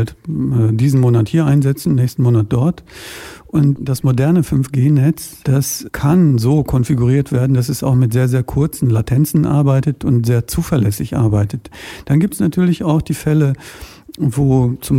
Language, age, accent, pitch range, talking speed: German, 50-69, German, 120-145 Hz, 150 wpm